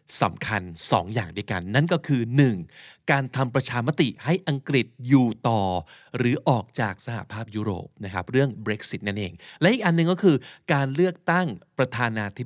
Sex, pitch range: male, 110-155 Hz